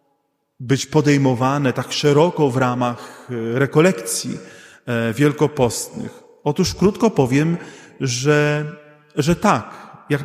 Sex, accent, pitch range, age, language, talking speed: male, native, 135-185 Hz, 40-59, Polish, 90 wpm